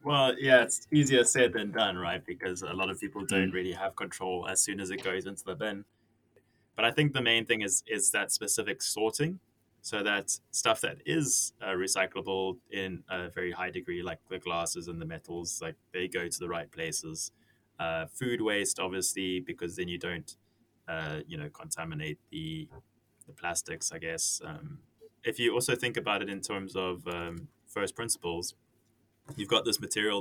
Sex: male